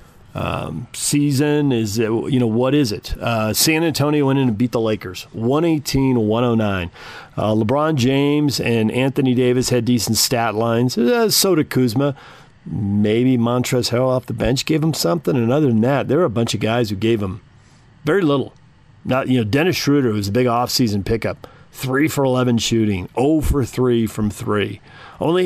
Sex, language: male, English